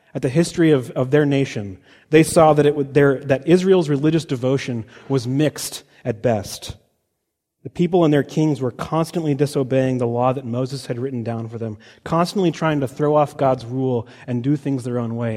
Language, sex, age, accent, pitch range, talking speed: English, male, 30-49, American, 130-165 Hz, 200 wpm